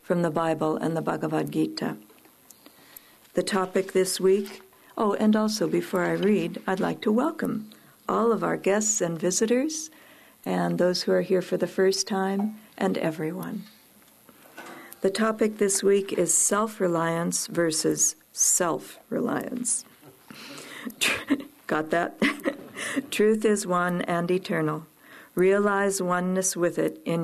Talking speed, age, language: 130 wpm, 60-79, English